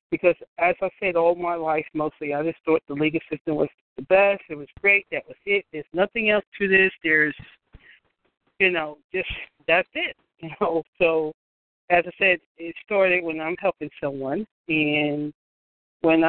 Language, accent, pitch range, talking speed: English, American, 155-200 Hz, 175 wpm